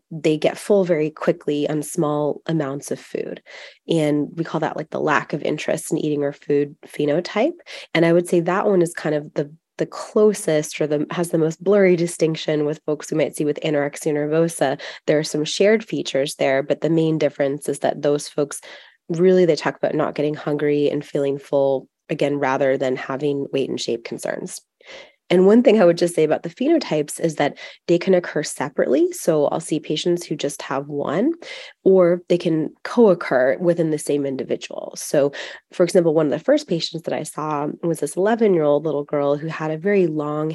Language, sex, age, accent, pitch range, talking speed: English, female, 20-39, American, 145-175 Hz, 200 wpm